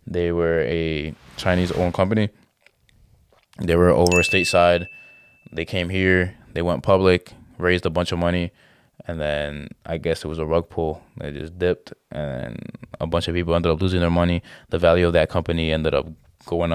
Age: 20-39